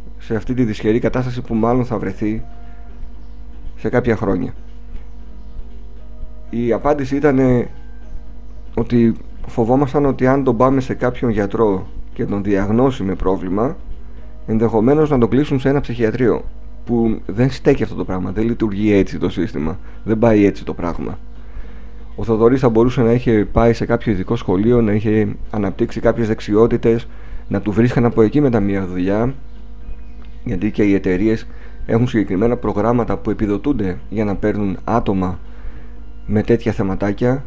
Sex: male